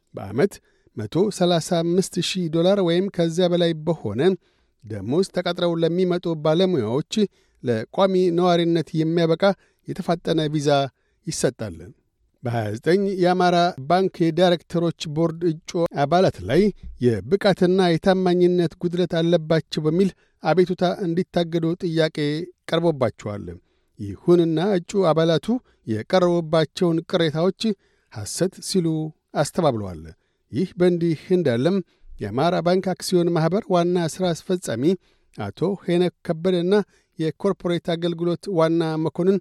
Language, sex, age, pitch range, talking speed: Amharic, male, 60-79, 160-185 Hz, 85 wpm